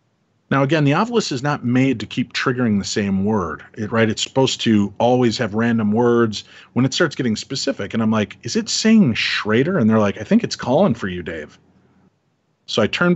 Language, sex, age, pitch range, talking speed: English, male, 40-59, 100-125 Hz, 215 wpm